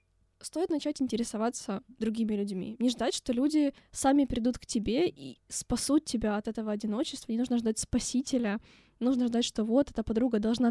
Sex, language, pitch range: female, Ukrainian, 220-260 Hz